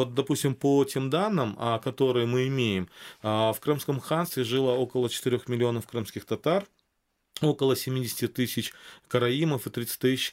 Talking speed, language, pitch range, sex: 140 wpm, Russian, 115-135 Hz, male